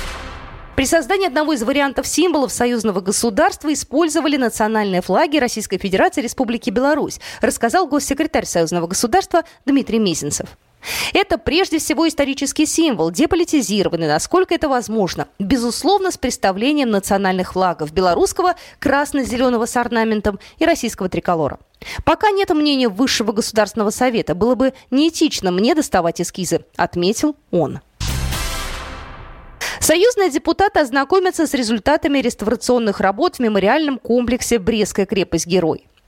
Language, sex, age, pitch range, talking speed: Russian, female, 20-39, 195-305 Hz, 115 wpm